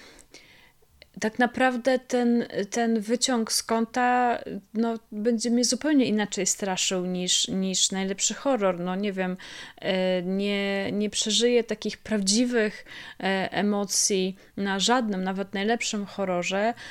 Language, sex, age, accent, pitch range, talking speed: Polish, female, 20-39, native, 200-230 Hz, 110 wpm